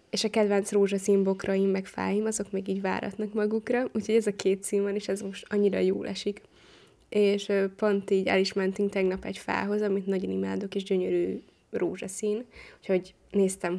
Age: 20-39